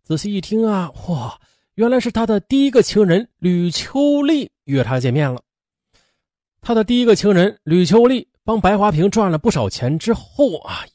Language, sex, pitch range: Chinese, male, 135-220 Hz